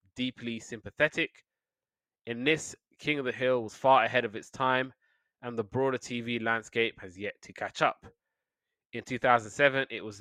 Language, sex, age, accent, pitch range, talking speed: English, male, 20-39, British, 115-135 Hz, 165 wpm